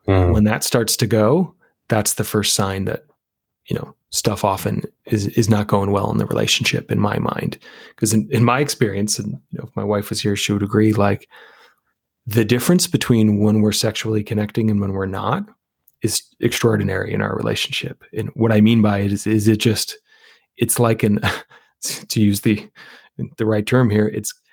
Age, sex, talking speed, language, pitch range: 30-49, male, 195 wpm, English, 105-130 Hz